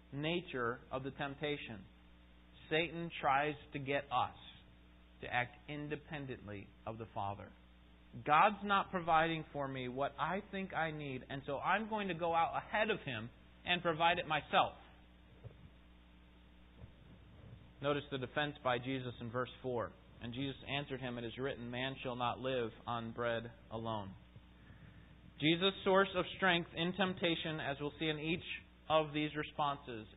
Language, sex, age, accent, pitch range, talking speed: English, male, 30-49, American, 120-170 Hz, 150 wpm